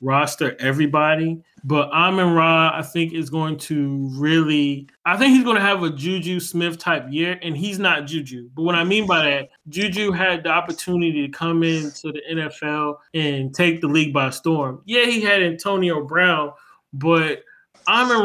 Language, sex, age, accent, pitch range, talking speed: English, male, 20-39, American, 150-180 Hz, 180 wpm